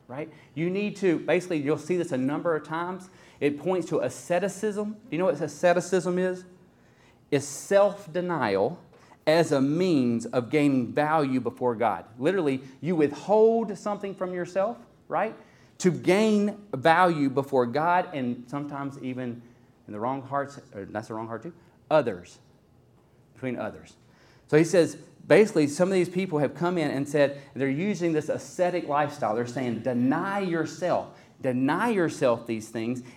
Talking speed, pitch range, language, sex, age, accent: 150 wpm, 125-175 Hz, English, male, 30-49, American